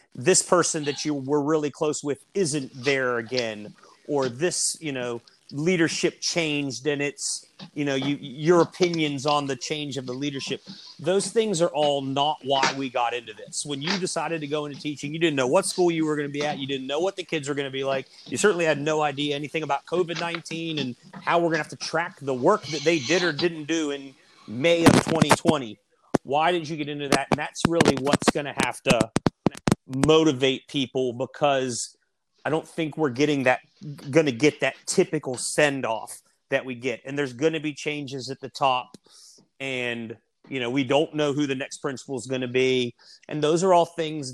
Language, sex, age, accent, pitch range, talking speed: English, male, 30-49, American, 130-160 Hz, 210 wpm